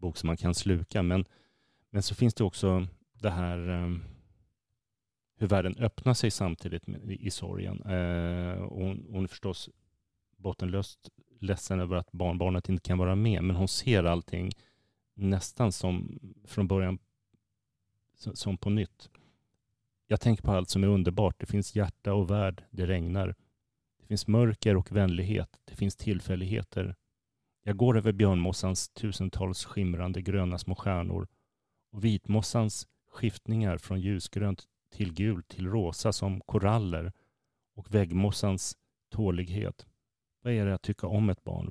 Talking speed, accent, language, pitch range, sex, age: 145 wpm, Swedish, English, 90-110 Hz, male, 30-49